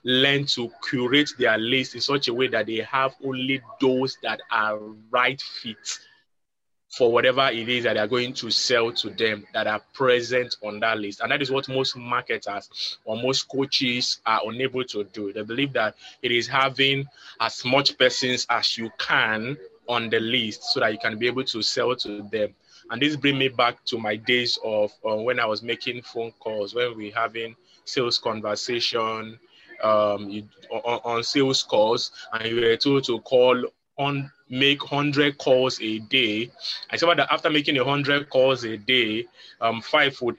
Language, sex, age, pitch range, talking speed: English, male, 20-39, 115-135 Hz, 185 wpm